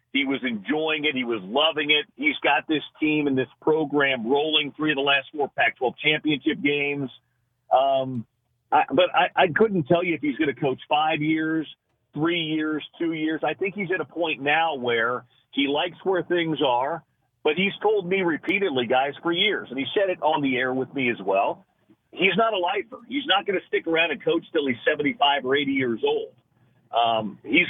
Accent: American